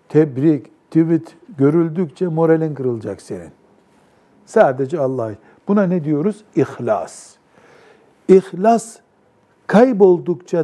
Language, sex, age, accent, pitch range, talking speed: Turkish, male, 60-79, native, 130-175 Hz, 80 wpm